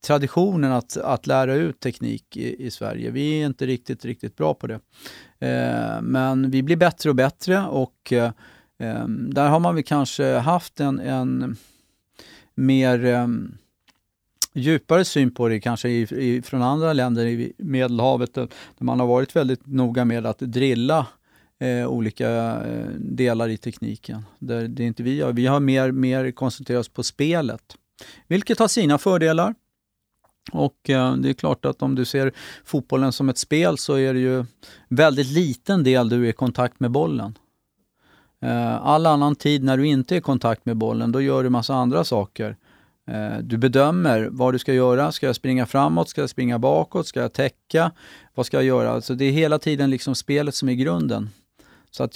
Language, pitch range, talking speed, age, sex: Swedish, 120-145 Hz, 180 wpm, 40-59, male